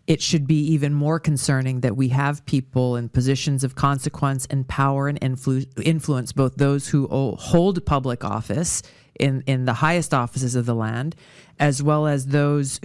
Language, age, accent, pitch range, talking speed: English, 40-59, American, 130-155 Hz, 175 wpm